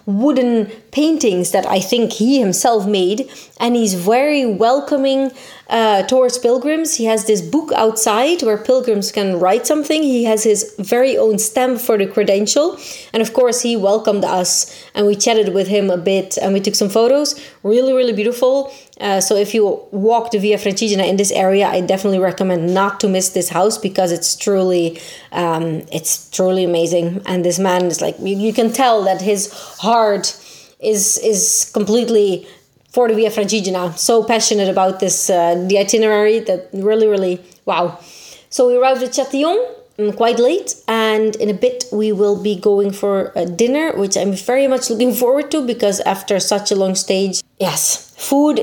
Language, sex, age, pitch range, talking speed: Italian, female, 20-39, 195-245 Hz, 180 wpm